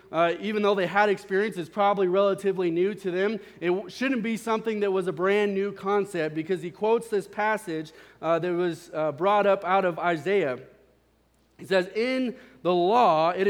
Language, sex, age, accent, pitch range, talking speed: English, male, 30-49, American, 180-225 Hz, 185 wpm